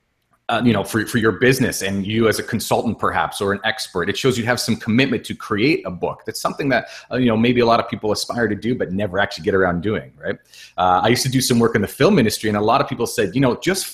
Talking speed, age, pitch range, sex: 290 wpm, 30-49, 105-135 Hz, male